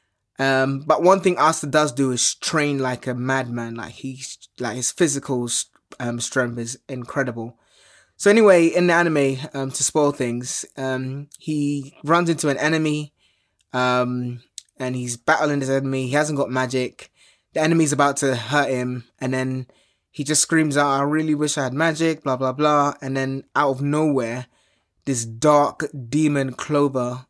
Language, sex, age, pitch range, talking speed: English, male, 20-39, 125-150 Hz, 170 wpm